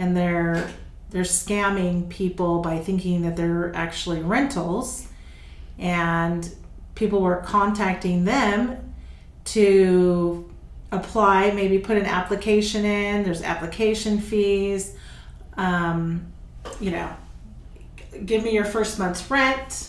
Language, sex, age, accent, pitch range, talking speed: English, female, 40-59, American, 180-225 Hz, 105 wpm